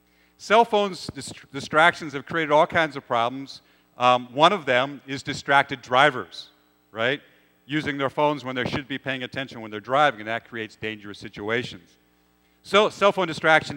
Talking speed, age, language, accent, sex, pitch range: 165 wpm, 50-69, English, American, male, 110-150 Hz